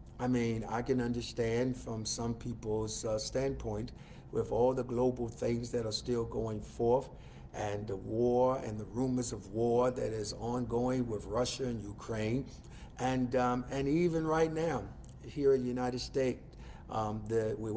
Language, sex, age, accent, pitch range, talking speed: English, male, 50-69, American, 110-130 Hz, 165 wpm